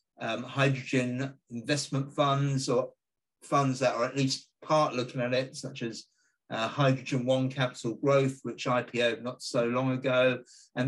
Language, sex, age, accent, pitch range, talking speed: English, male, 50-69, British, 120-140 Hz, 155 wpm